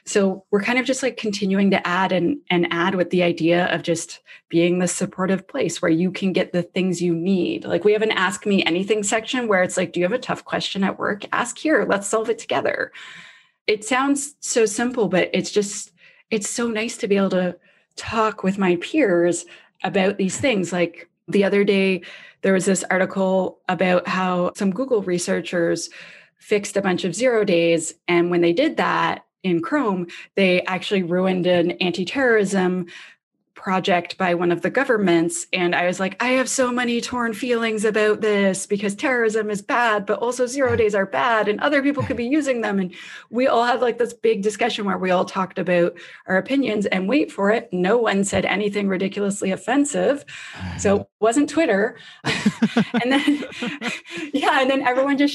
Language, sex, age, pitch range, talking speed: English, female, 20-39, 180-235 Hz, 190 wpm